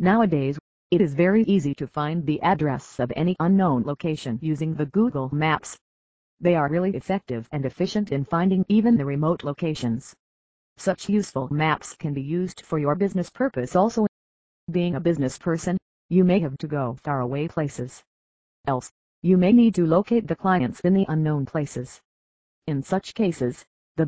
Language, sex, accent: English, female, American